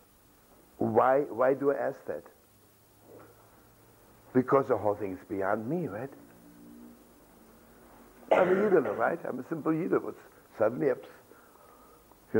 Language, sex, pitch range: English, male, 110-155 Hz